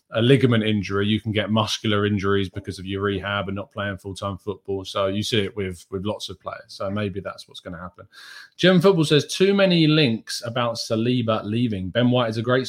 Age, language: 20-39, English